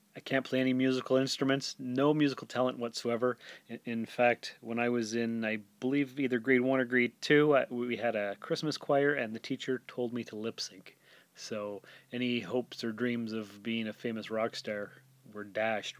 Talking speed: 190 wpm